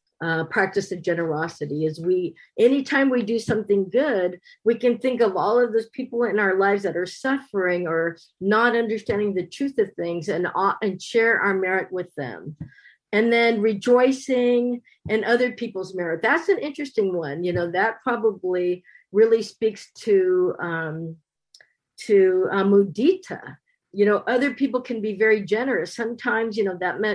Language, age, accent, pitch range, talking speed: English, 50-69, American, 180-230 Hz, 165 wpm